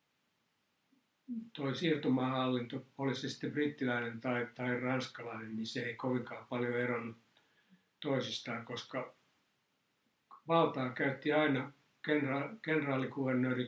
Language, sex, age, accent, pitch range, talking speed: Finnish, male, 60-79, native, 120-135 Hz, 95 wpm